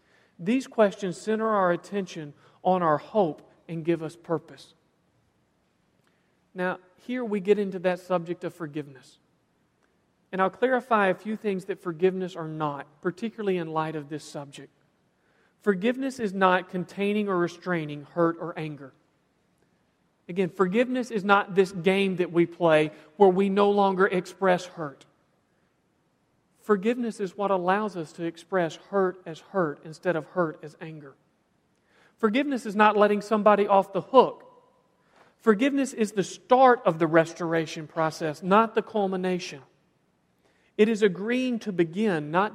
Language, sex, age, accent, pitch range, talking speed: English, male, 40-59, American, 165-210 Hz, 140 wpm